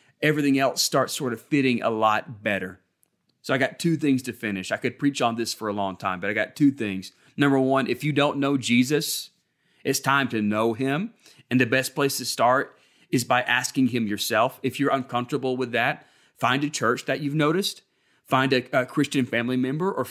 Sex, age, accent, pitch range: male, 30-49, American, 120-145 Hz